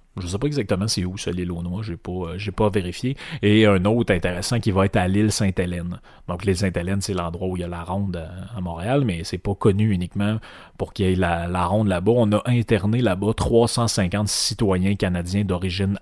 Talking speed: 225 wpm